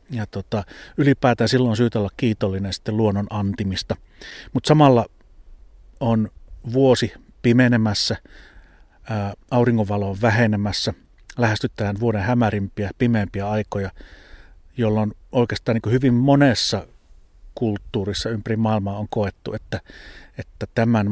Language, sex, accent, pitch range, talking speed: Finnish, male, native, 100-115 Hz, 100 wpm